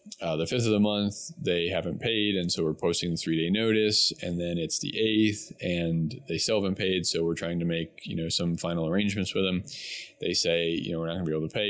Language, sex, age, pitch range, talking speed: English, male, 20-39, 80-95 Hz, 255 wpm